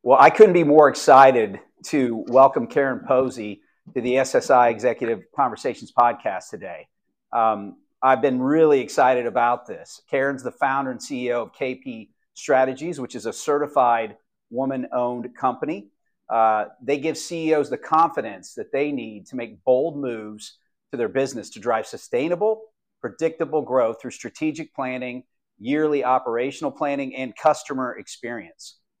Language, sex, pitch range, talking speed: English, male, 120-150 Hz, 140 wpm